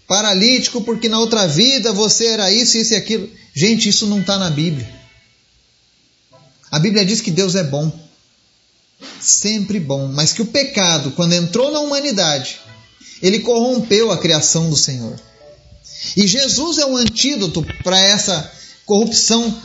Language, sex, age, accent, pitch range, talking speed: Portuguese, male, 30-49, Brazilian, 175-230 Hz, 145 wpm